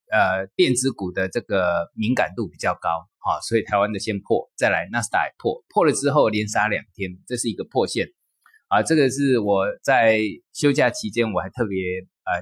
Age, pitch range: 20-39, 100-155 Hz